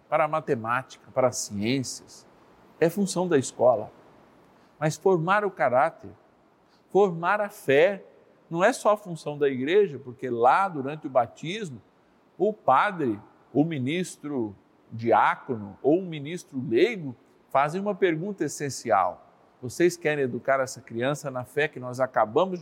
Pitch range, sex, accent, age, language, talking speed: 125-175 Hz, male, Brazilian, 50-69, Portuguese, 140 wpm